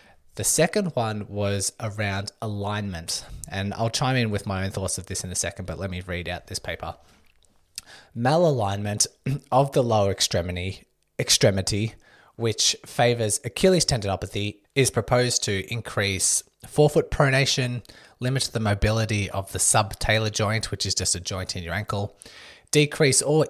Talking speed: 150 wpm